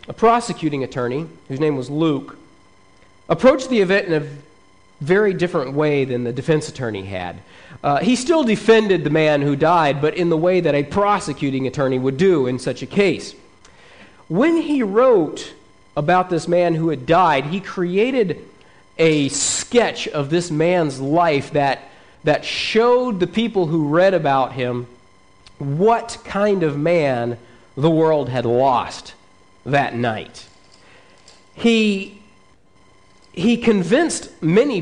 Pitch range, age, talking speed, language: 130-195 Hz, 40-59, 140 wpm, English